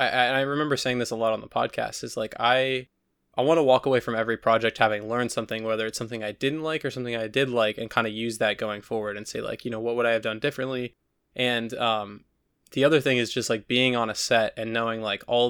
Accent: American